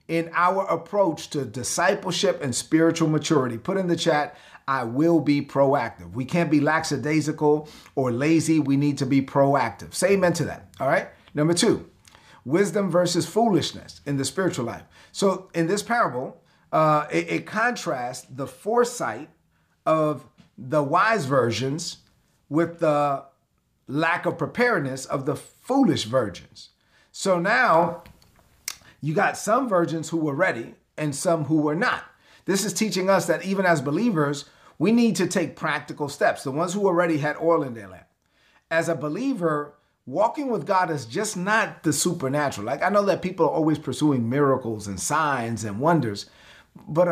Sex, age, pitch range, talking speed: male, 40-59, 140-180 Hz, 160 wpm